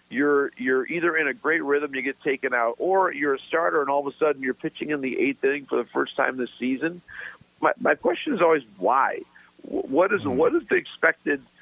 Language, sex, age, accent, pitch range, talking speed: English, male, 50-69, American, 125-165 Hz, 225 wpm